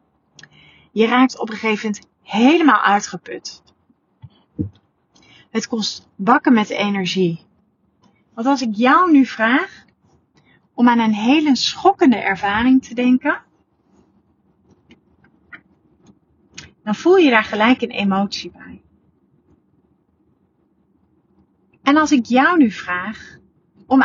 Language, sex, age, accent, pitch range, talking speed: Dutch, female, 30-49, Dutch, 210-270 Hz, 105 wpm